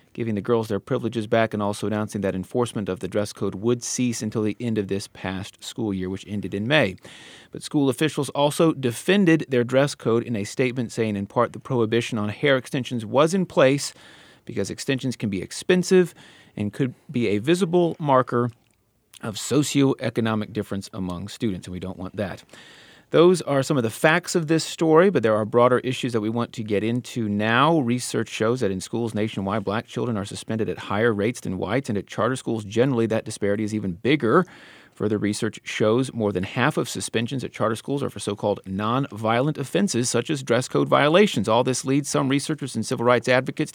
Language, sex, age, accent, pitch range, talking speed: English, male, 30-49, American, 110-140 Hz, 205 wpm